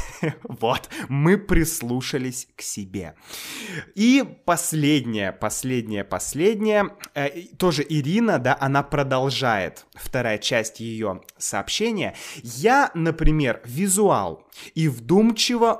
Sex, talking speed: male, 90 wpm